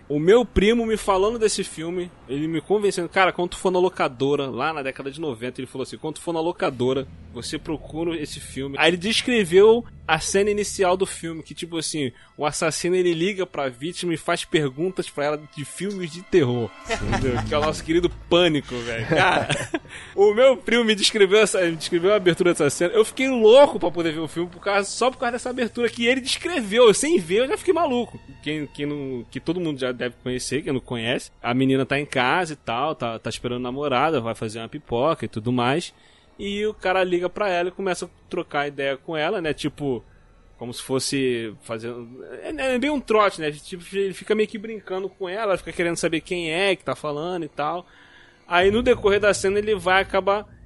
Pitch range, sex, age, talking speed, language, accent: 135-195 Hz, male, 20-39, 220 wpm, Portuguese, Brazilian